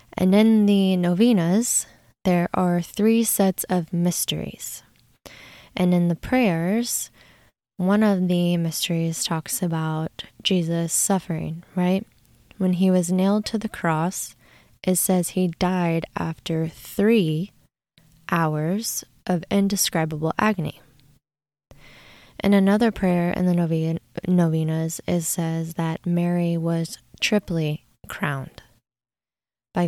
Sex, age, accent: female, 20-39, American